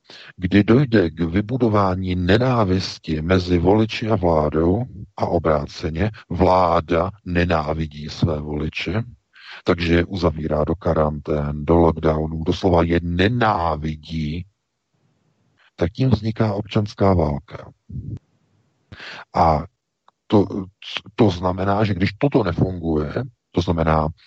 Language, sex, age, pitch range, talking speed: Czech, male, 50-69, 80-100 Hz, 100 wpm